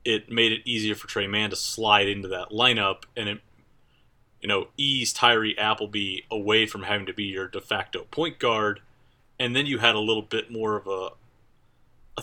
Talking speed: 195 wpm